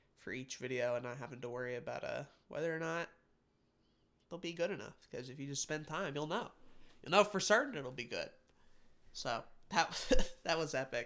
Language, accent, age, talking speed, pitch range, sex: English, American, 20-39, 200 wpm, 130-160 Hz, male